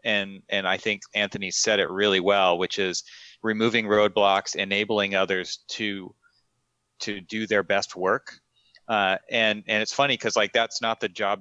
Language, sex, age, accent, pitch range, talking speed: English, male, 30-49, American, 95-110 Hz, 170 wpm